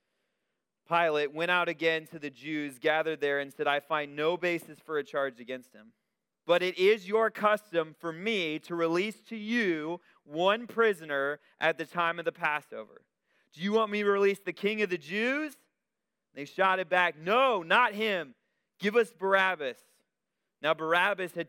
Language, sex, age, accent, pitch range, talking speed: English, male, 30-49, American, 155-205 Hz, 175 wpm